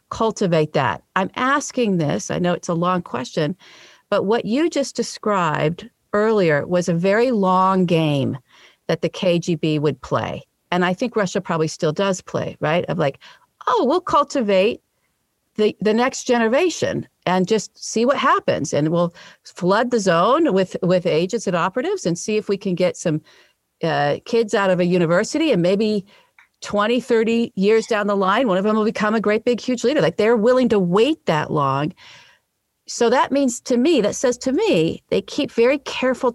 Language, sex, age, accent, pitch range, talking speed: English, female, 50-69, American, 170-230 Hz, 185 wpm